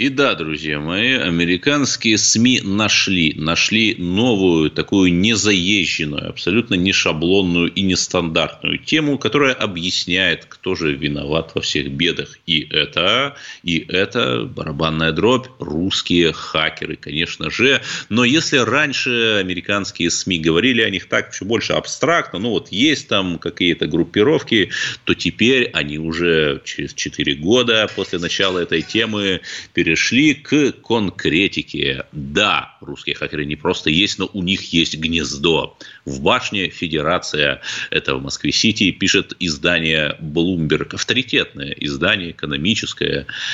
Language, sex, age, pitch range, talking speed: Russian, male, 30-49, 80-100 Hz, 125 wpm